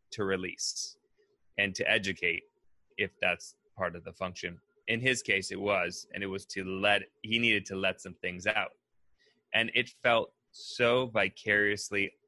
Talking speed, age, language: 160 wpm, 30-49, English